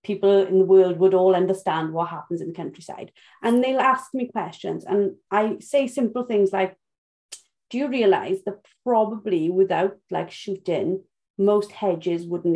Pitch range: 195-280 Hz